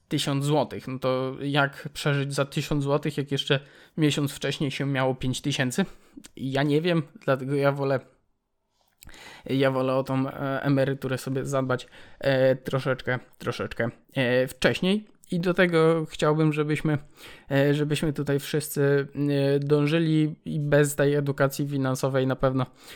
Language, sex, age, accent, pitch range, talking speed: Polish, male, 20-39, native, 130-150 Hz, 140 wpm